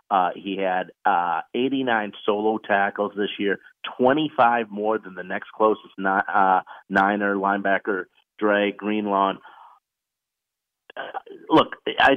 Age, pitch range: 40-59, 105-130 Hz